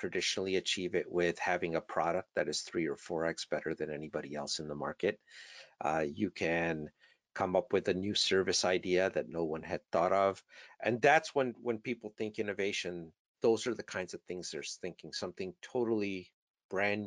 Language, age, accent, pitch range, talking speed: English, 50-69, American, 90-120 Hz, 190 wpm